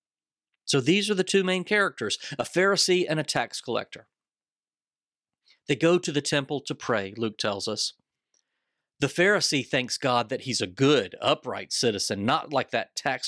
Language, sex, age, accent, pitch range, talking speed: English, male, 40-59, American, 120-150 Hz, 165 wpm